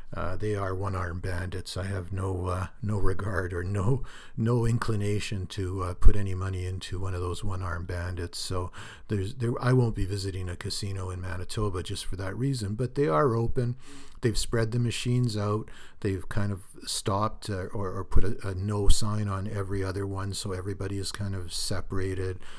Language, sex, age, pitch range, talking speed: English, male, 60-79, 95-110 Hz, 195 wpm